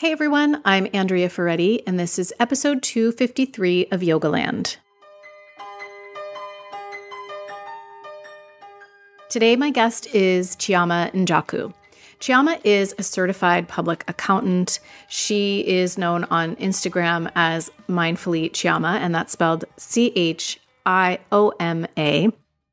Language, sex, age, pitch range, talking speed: English, female, 30-49, 175-220 Hz, 100 wpm